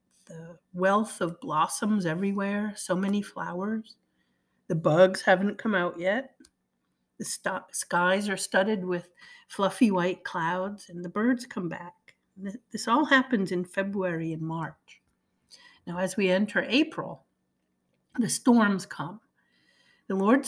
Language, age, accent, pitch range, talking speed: English, 50-69, American, 175-215 Hz, 130 wpm